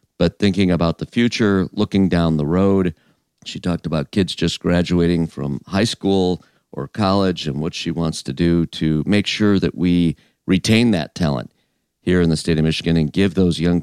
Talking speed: 190 wpm